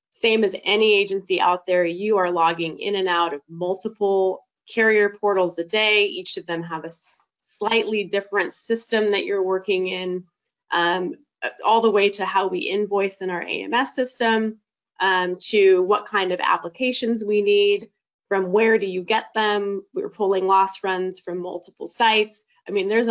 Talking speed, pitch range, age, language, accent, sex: 170 wpm, 180-220 Hz, 20-39, English, American, female